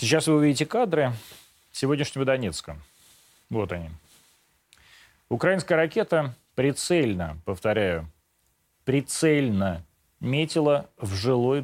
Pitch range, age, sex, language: 95-150 Hz, 30-49, male, Russian